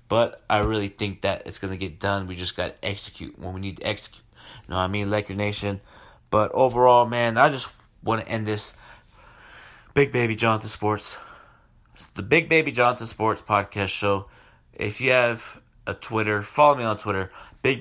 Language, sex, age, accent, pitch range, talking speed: English, male, 30-49, American, 100-120 Hz, 195 wpm